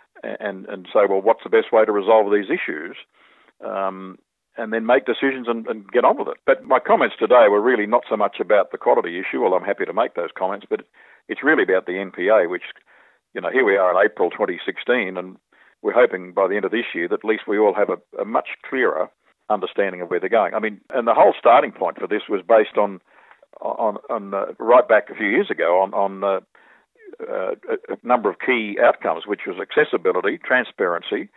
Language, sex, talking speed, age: English, male, 220 wpm, 50-69